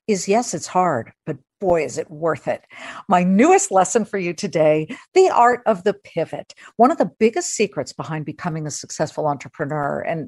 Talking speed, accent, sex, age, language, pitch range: 185 wpm, American, female, 50-69, English, 160-230 Hz